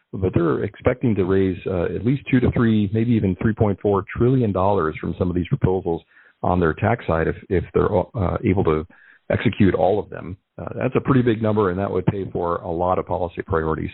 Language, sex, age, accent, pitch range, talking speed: English, male, 40-59, American, 90-110 Hz, 220 wpm